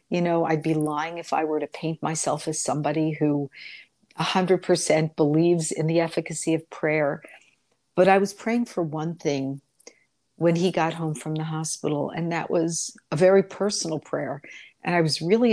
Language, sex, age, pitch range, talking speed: English, female, 60-79, 150-175 Hz, 180 wpm